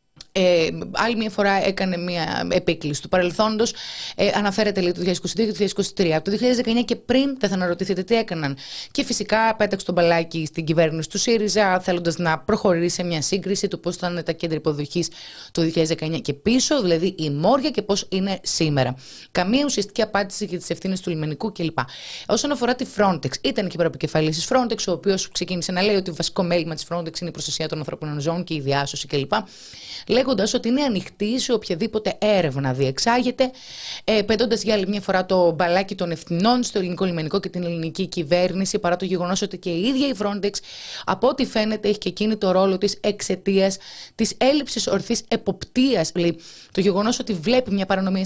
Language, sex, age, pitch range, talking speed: Greek, female, 20-39, 170-220 Hz, 180 wpm